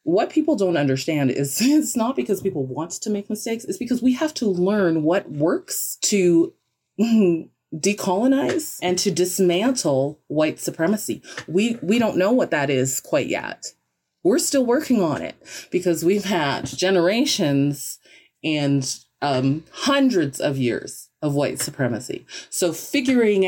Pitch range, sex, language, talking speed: 140-195 Hz, female, English, 145 wpm